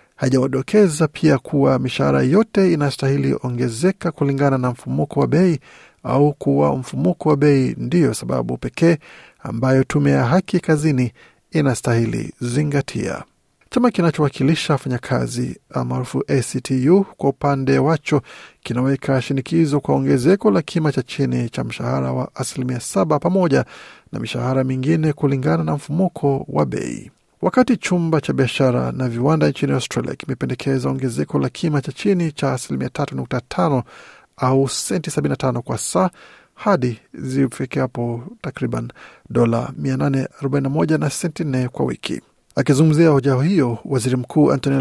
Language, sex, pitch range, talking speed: Swahili, male, 130-155 Hz, 120 wpm